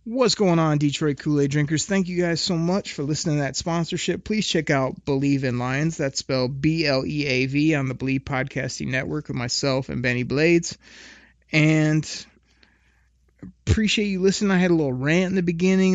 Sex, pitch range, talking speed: male, 130-170 Hz, 175 wpm